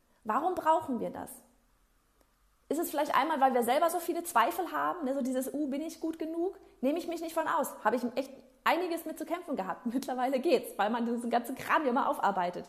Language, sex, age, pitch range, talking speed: German, female, 30-49, 240-300 Hz, 225 wpm